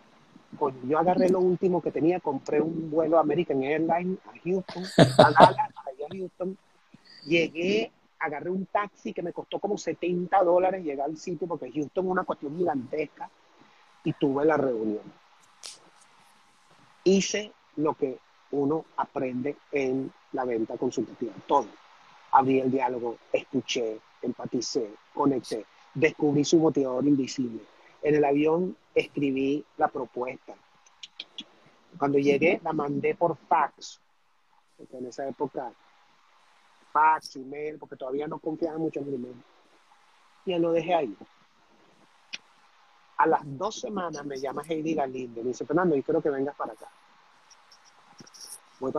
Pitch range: 140-175 Hz